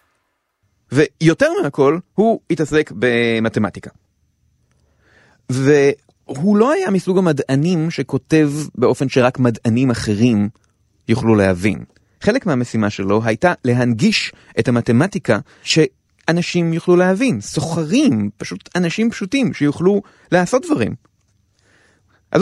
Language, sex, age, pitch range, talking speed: Hebrew, male, 30-49, 115-175 Hz, 95 wpm